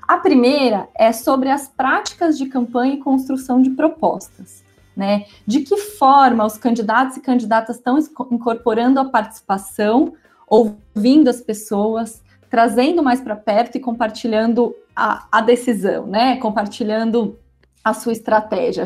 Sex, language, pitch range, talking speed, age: female, Portuguese, 220-265 Hz, 130 wpm, 20-39